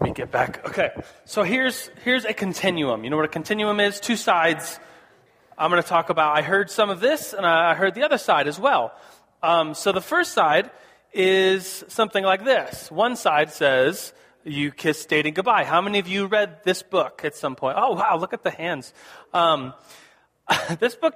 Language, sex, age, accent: English, male, 30-49, American